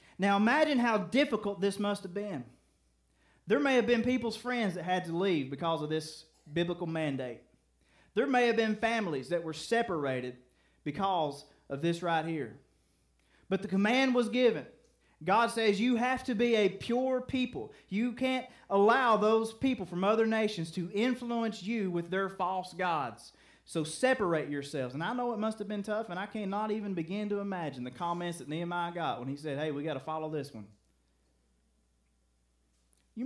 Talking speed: 180 wpm